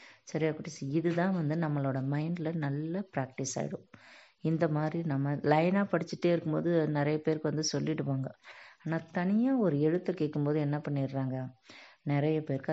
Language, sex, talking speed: Tamil, female, 135 wpm